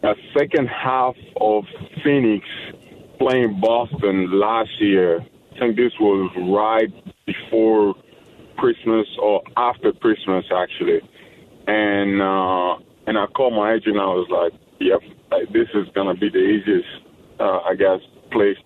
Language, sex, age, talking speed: English, male, 20-39, 140 wpm